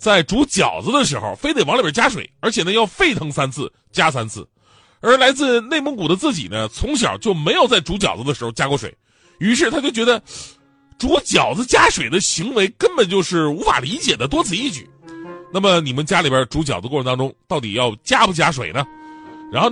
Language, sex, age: Chinese, male, 30-49